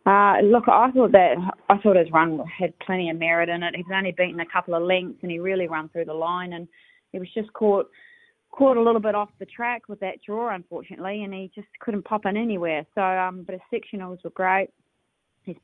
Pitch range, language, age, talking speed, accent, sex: 165-195 Hz, English, 20-39, 230 wpm, Australian, female